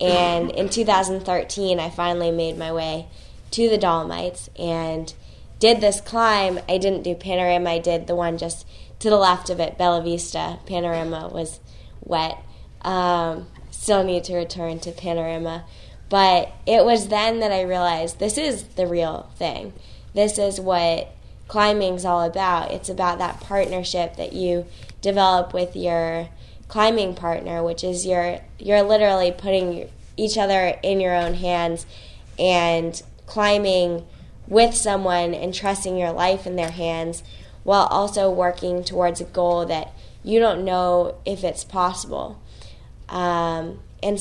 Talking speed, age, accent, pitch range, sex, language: 145 wpm, 10-29, American, 170-190 Hz, female, English